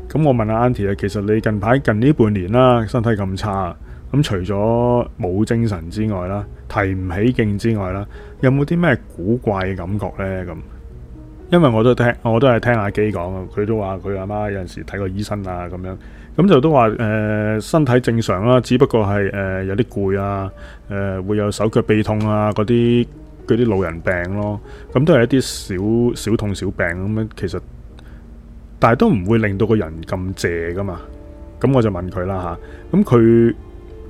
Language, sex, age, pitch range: Chinese, male, 20-39, 90-115 Hz